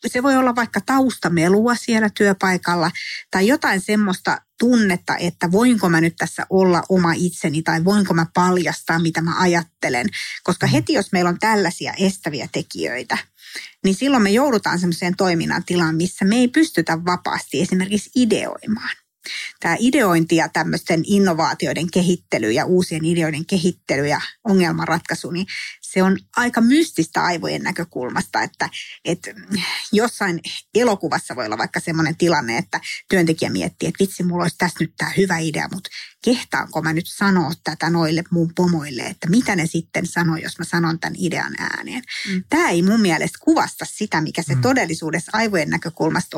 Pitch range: 165-210 Hz